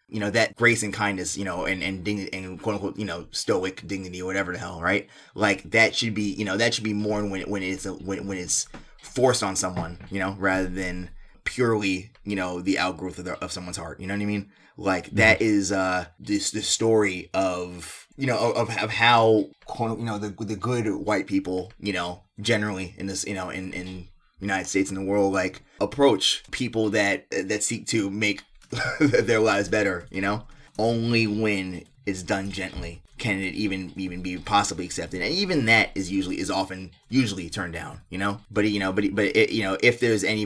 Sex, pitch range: male, 90-105 Hz